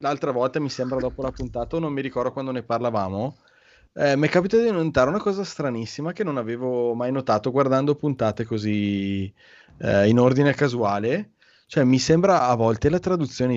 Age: 20-39